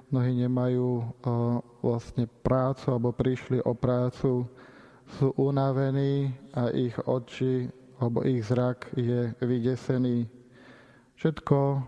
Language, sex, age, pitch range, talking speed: Slovak, male, 20-39, 120-135 Hz, 100 wpm